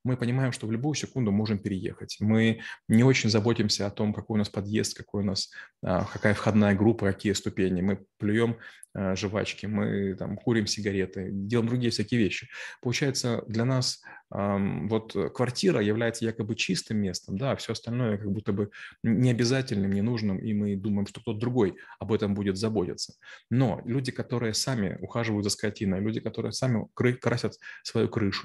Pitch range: 105-125 Hz